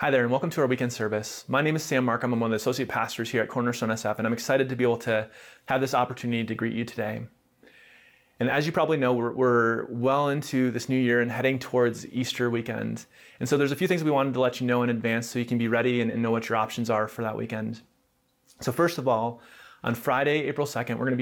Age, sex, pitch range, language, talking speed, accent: 30-49, male, 115-135 Hz, English, 265 wpm, American